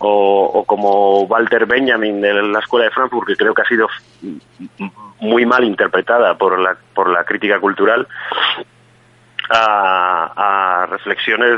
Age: 30-49